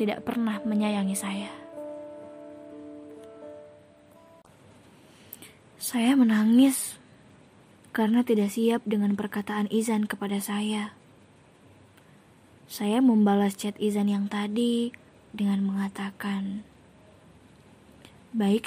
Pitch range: 205-235 Hz